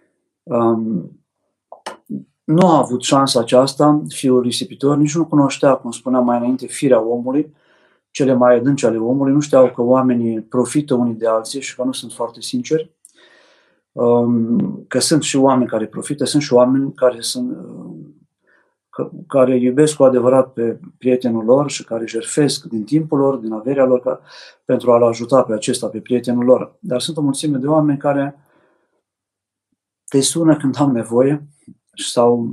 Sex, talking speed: male, 160 wpm